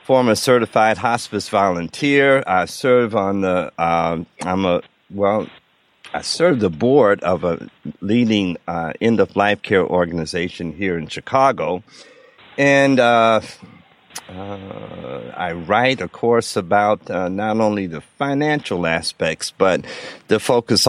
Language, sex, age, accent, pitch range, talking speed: English, male, 50-69, American, 90-130 Hz, 130 wpm